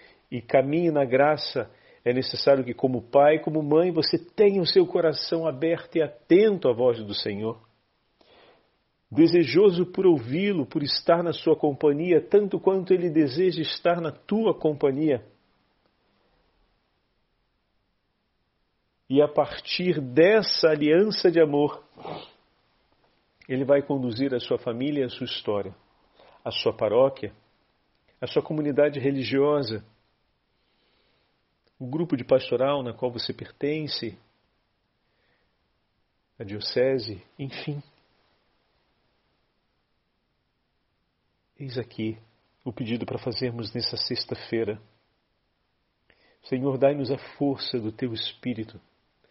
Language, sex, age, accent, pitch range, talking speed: Portuguese, male, 50-69, Brazilian, 120-155 Hz, 110 wpm